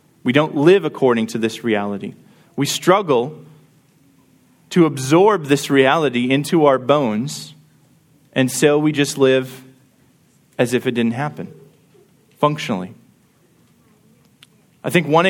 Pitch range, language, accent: 135-175 Hz, English, American